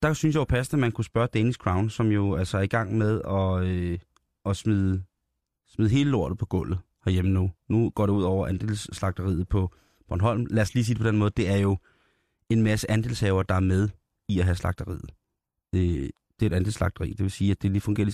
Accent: native